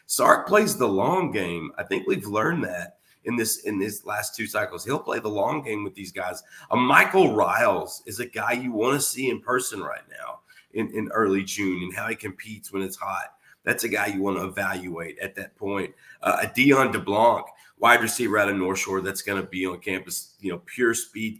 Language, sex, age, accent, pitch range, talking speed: English, male, 30-49, American, 95-110 Hz, 225 wpm